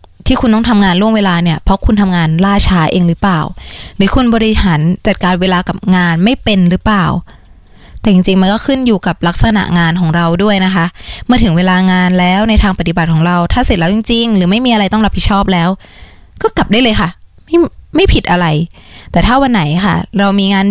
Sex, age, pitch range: female, 20-39, 175-215 Hz